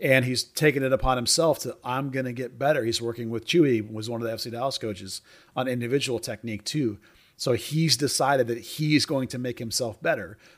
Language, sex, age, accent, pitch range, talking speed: English, male, 40-59, American, 110-130 Hz, 215 wpm